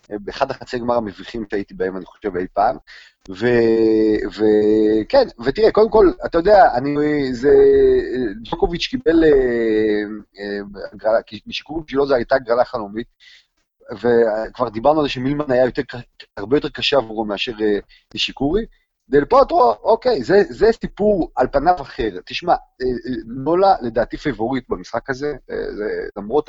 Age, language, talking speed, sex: 30-49, Hebrew, 145 wpm, male